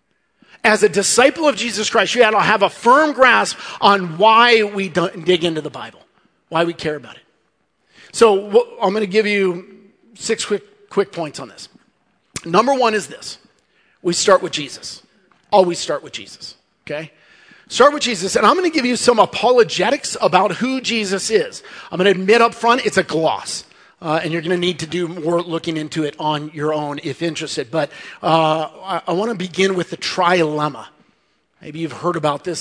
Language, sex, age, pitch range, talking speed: English, male, 40-59, 160-205 Hz, 200 wpm